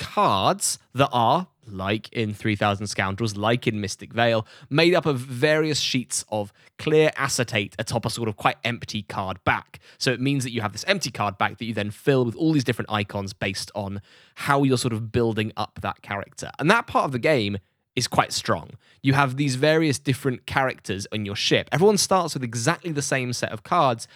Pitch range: 110-145 Hz